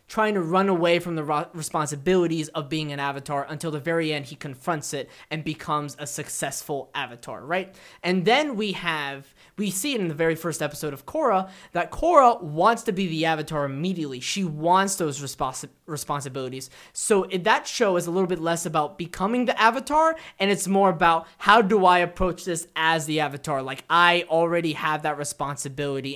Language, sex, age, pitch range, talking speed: English, male, 20-39, 150-185 Hz, 185 wpm